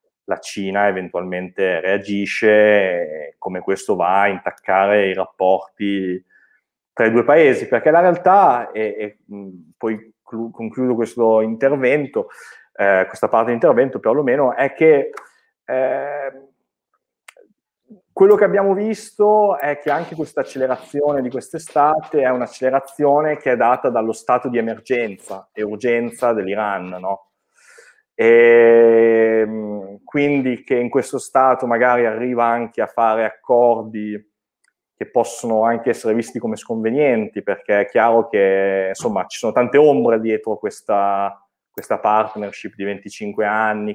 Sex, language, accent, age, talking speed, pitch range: male, Italian, native, 30-49, 125 wpm, 105-130 Hz